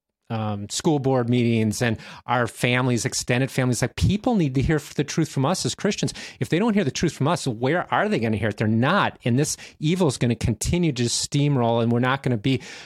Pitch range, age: 115-145 Hz, 30-49